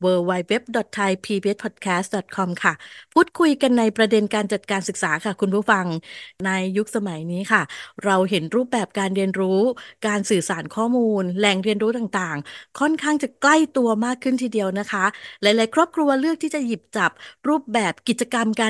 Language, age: Thai, 20-39